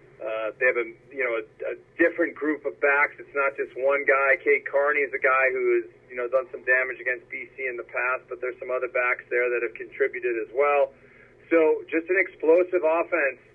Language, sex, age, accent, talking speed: English, male, 40-59, American, 220 wpm